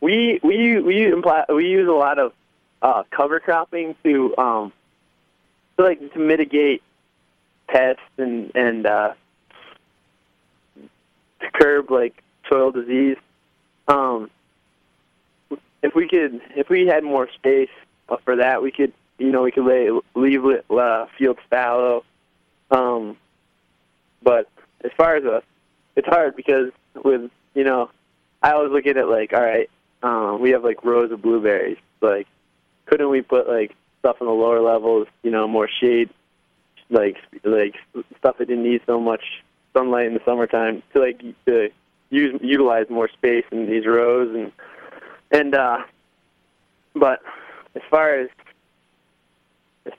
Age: 20-39